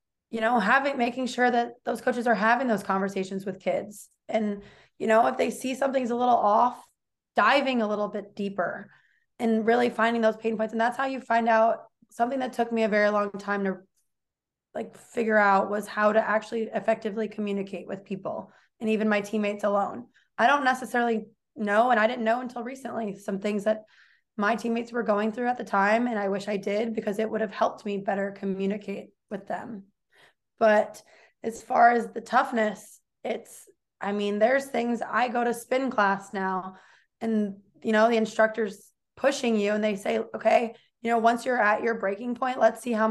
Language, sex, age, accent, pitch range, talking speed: English, female, 20-39, American, 205-240 Hz, 195 wpm